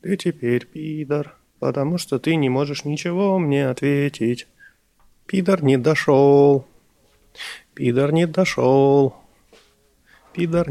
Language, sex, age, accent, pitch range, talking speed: Russian, male, 30-49, native, 130-180 Hz, 100 wpm